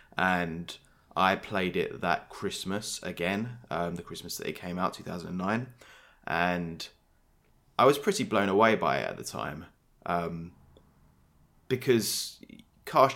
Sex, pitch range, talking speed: male, 85-105 Hz, 130 wpm